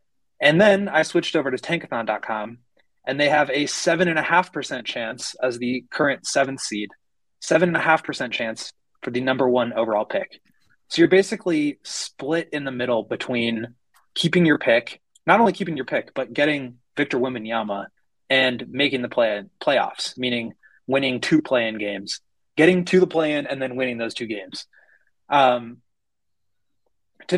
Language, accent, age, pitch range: English, American, 20-39, 115-150 Hz